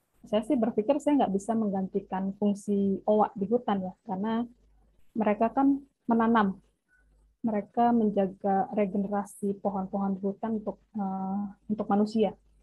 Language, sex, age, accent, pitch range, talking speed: Indonesian, female, 20-39, native, 195-225 Hz, 120 wpm